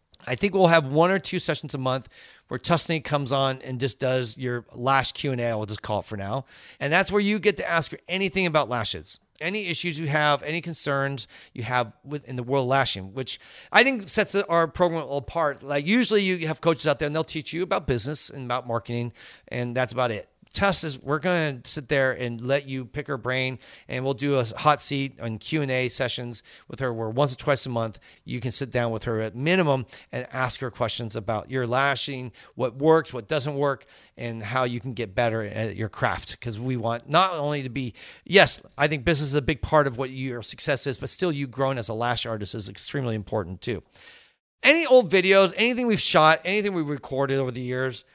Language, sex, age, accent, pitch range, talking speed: English, male, 40-59, American, 120-155 Hz, 225 wpm